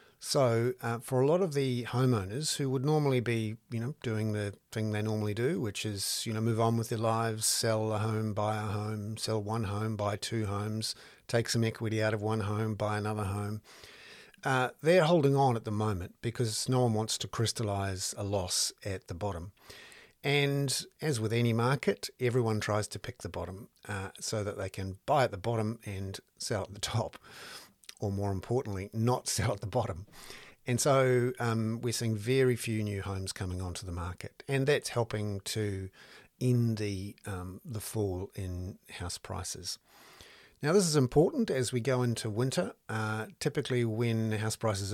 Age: 50-69